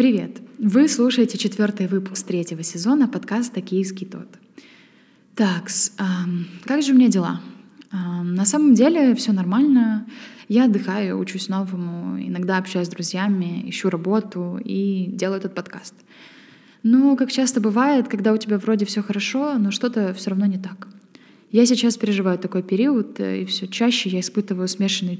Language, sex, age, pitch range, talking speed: Ukrainian, female, 20-39, 185-225 Hz, 150 wpm